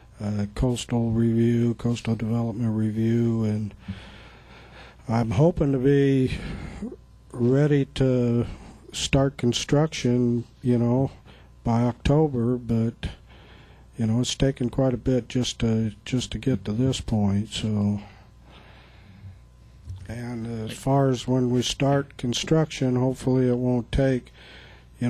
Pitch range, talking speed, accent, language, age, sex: 110-125 Hz, 115 wpm, American, English, 50-69, male